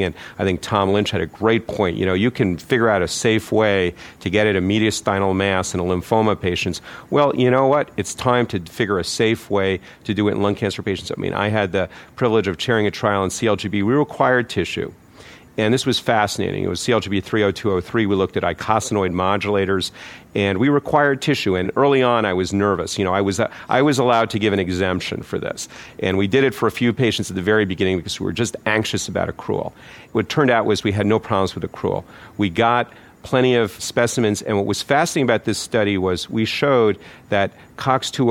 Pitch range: 95-115 Hz